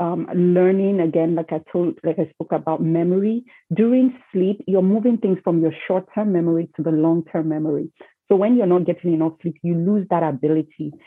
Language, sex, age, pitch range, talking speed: English, female, 40-59, 160-190 Hz, 190 wpm